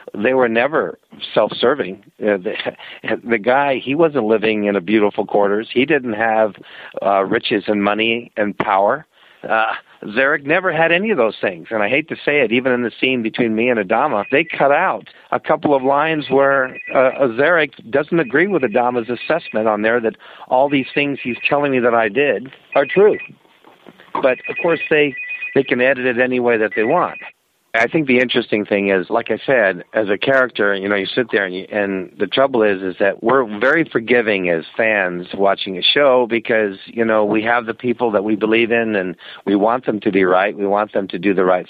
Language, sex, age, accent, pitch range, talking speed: English, male, 50-69, American, 105-125 Hz, 205 wpm